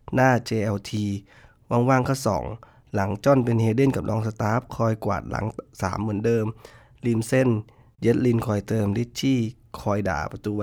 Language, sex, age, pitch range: Thai, male, 20-39, 100-125 Hz